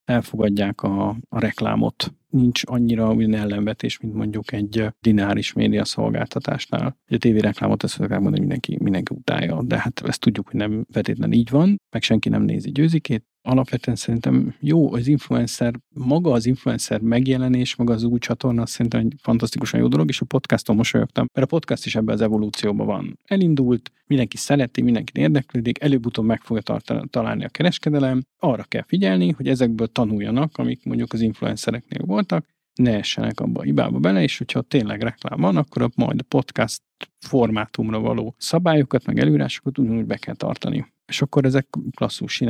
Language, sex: Hungarian, male